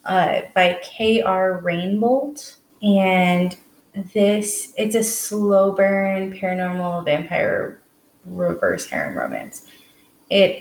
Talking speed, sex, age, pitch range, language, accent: 90 wpm, female, 20-39, 175-205 Hz, English, American